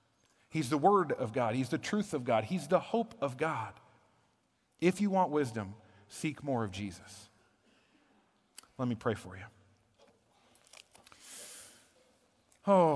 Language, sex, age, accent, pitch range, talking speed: English, male, 40-59, American, 110-145 Hz, 135 wpm